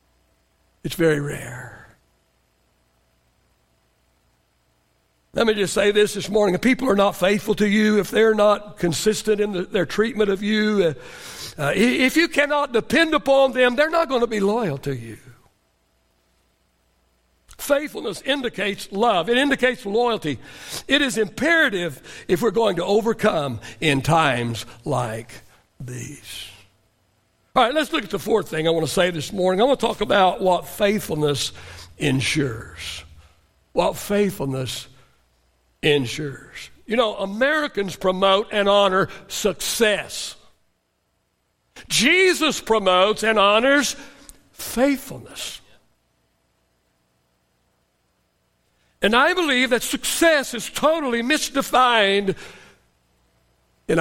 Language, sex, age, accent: English, male, 60-79, American